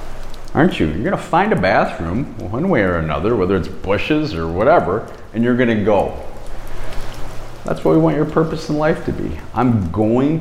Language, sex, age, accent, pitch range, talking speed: English, male, 40-59, American, 90-125 Hz, 185 wpm